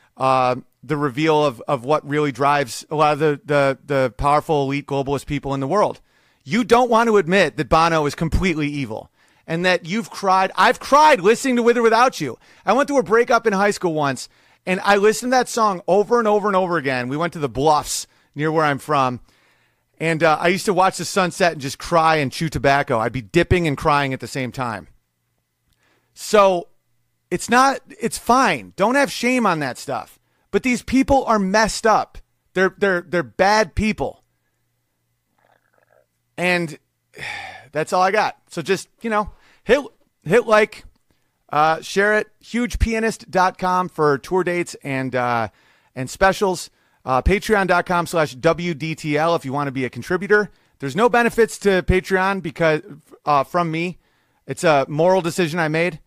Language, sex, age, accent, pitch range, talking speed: English, male, 40-59, American, 140-200 Hz, 180 wpm